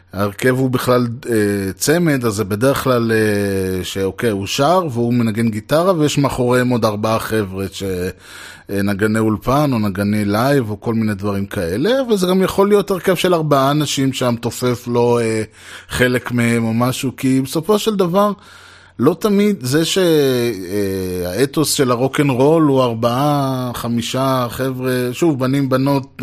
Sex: male